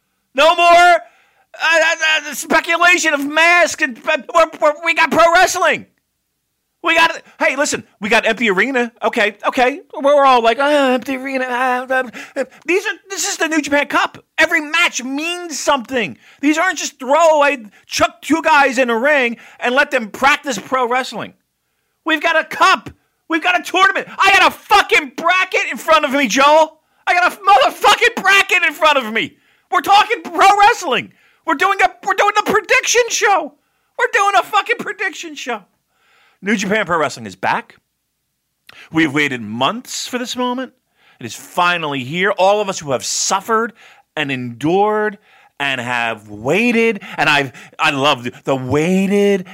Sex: male